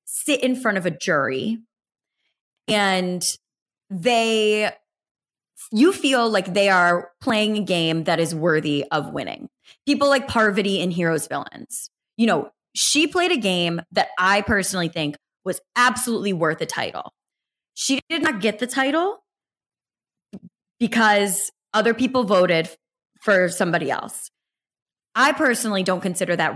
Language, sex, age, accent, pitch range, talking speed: English, female, 20-39, American, 175-230 Hz, 135 wpm